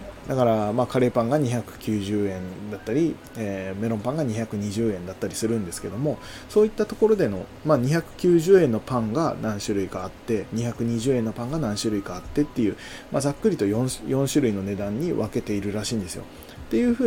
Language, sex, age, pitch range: Japanese, male, 20-39, 105-150 Hz